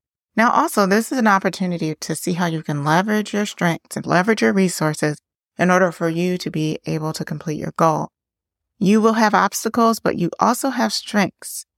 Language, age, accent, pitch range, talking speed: English, 30-49, American, 160-210 Hz, 195 wpm